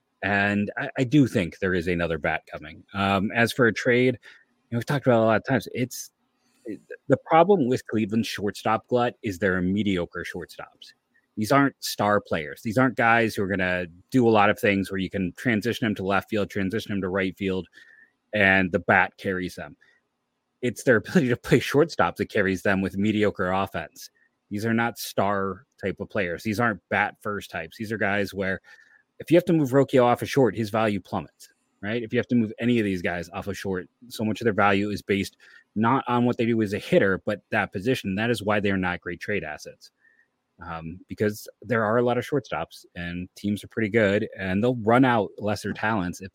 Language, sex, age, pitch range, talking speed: English, male, 30-49, 95-115 Hz, 225 wpm